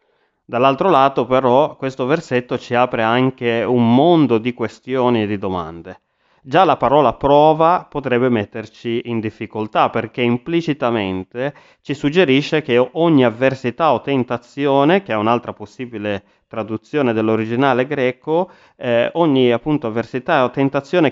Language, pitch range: Italian, 110-135 Hz